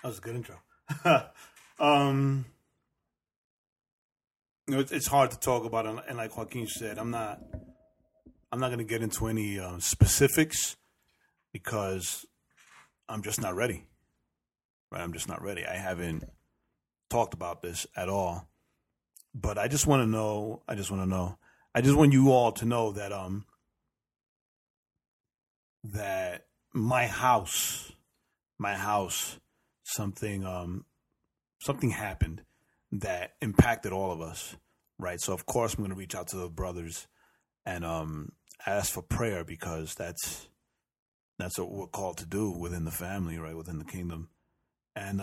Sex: male